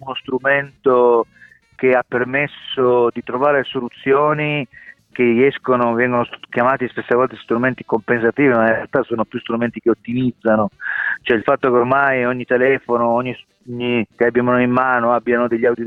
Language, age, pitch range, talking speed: Italian, 40-59, 120-130 Hz, 150 wpm